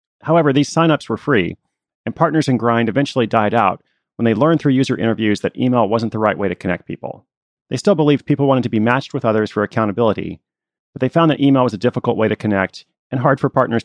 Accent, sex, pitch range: American, male, 105-135 Hz